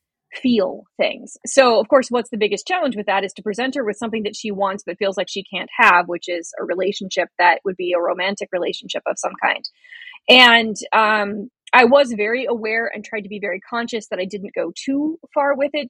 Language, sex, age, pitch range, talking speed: English, female, 30-49, 200-245 Hz, 225 wpm